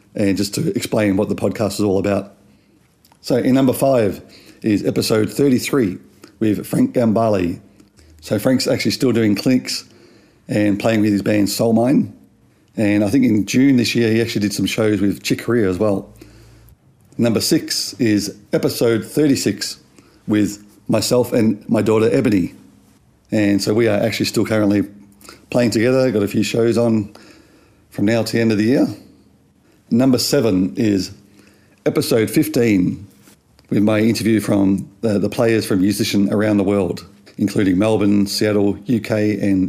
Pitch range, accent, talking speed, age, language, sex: 100-115 Hz, Australian, 155 wpm, 40-59, English, male